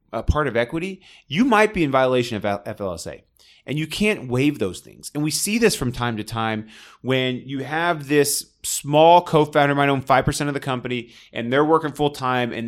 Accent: American